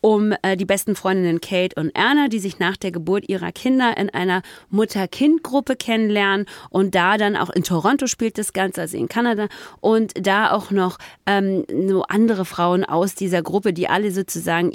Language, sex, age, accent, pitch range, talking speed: German, female, 30-49, German, 180-220 Hz, 185 wpm